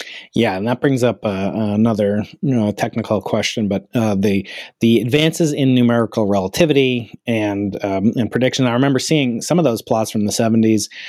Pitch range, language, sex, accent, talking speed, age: 115-140 Hz, English, male, American, 180 wpm, 30-49